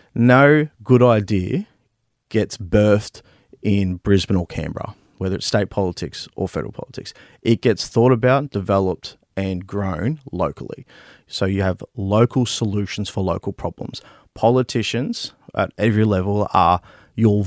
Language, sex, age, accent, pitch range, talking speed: English, male, 30-49, Australian, 100-130 Hz, 130 wpm